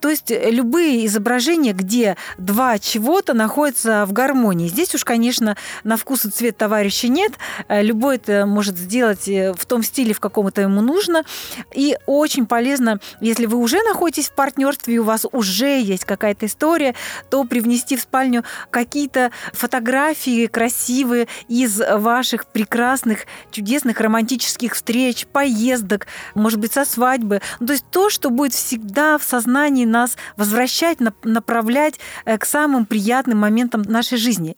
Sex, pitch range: female, 215-265 Hz